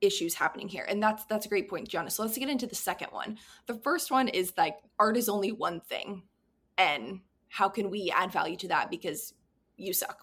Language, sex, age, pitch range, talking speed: English, female, 20-39, 195-250 Hz, 225 wpm